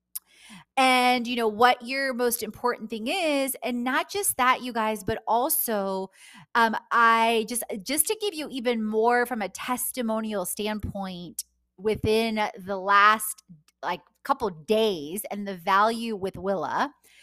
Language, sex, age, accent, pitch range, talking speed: English, female, 20-39, American, 205-250 Hz, 145 wpm